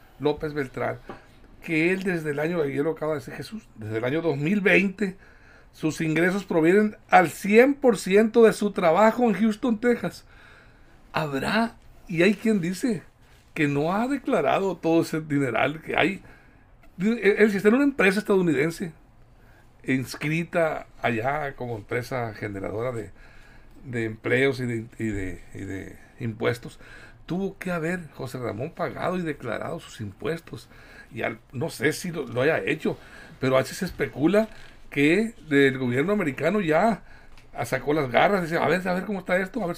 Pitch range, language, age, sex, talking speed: 125-195 Hz, Spanish, 60-79, male, 160 wpm